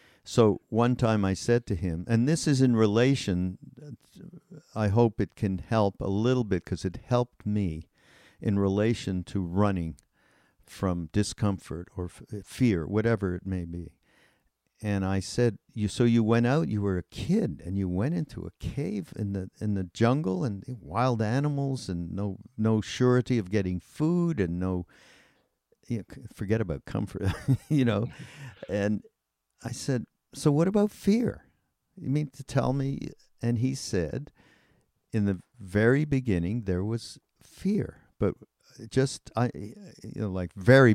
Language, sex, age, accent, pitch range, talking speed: English, male, 50-69, American, 95-120 Hz, 155 wpm